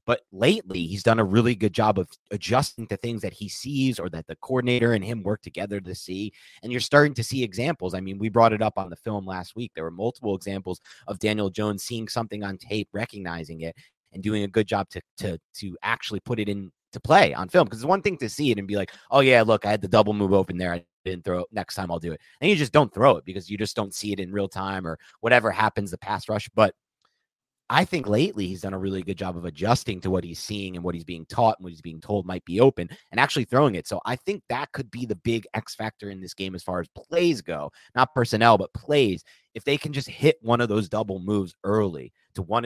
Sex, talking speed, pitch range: male, 265 wpm, 95-120 Hz